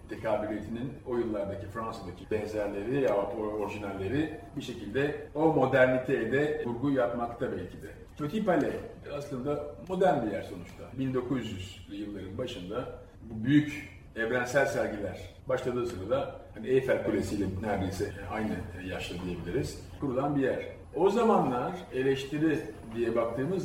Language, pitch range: Turkish, 100-135 Hz